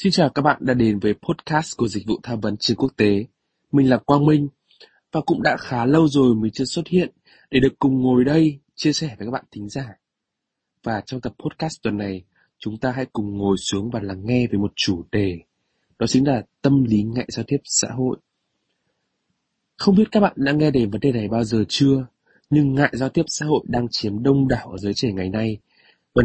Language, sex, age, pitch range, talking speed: Vietnamese, male, 20-39, 110-150 Hz, 230 wpm